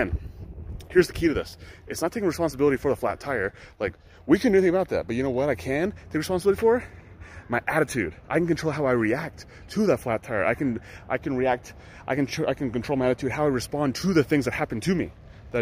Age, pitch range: 30-49, 105-150 Hz